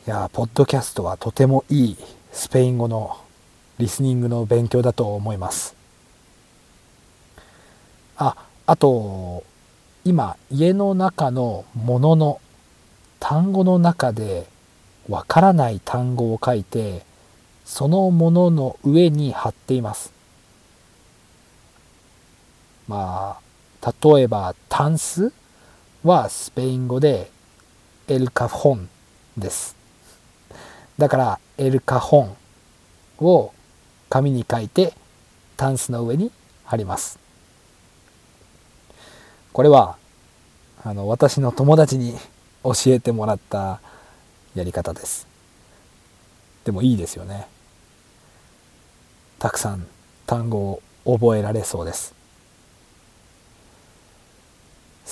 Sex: male